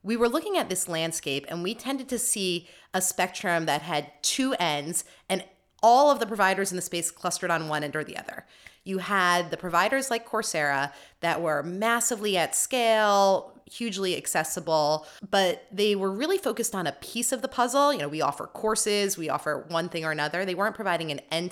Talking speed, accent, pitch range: 200 wpm, American, 150-205 Hz